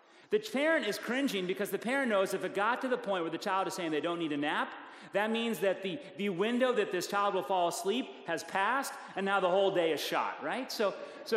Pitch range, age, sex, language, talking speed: 185-245 Hz, 40-59, male, English, 255 wpm